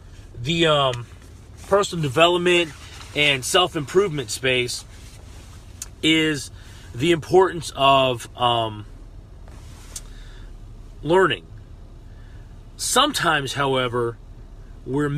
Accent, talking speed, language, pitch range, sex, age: American, 65 wpm, English, 100-145 Hz, male, 30-49